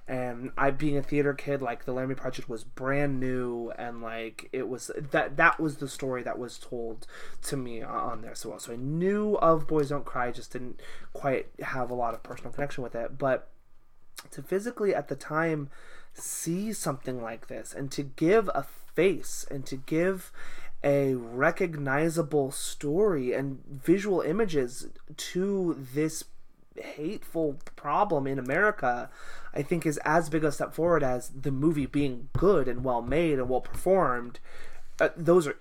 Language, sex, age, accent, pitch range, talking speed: English, male, 20-39, American, 125-160 Hz, 170 wpm